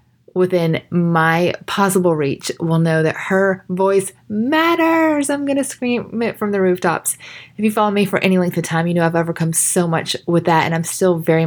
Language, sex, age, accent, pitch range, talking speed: English, female, 20-39, American, 160-205 Hz, 200 wpm